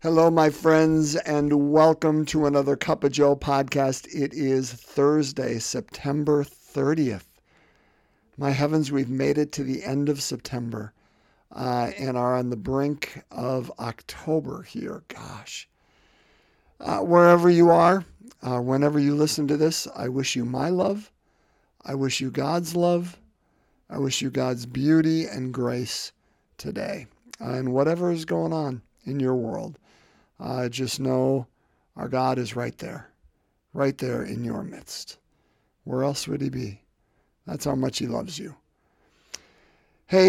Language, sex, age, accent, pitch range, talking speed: English, male, 50-69, American, 135-195 Hz, 145 wpm